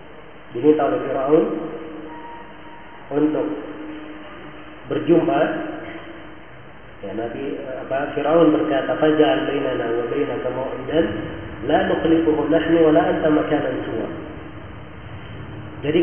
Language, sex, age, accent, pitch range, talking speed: Indonesian, male, 40-59, native, 150-165 Hz, 95 wpm